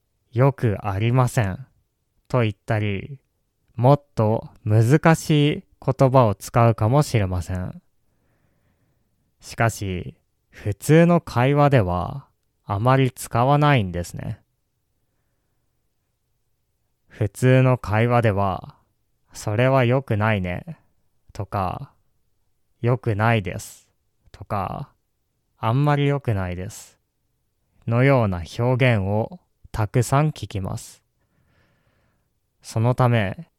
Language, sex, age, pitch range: Japanese, male, 20-39, 105-135 Hz